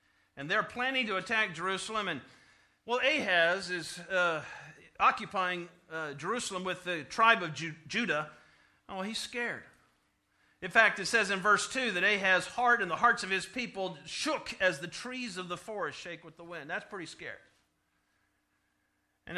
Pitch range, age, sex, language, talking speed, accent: 155-215 Hz, 50-69, male, English, 165 wpm, American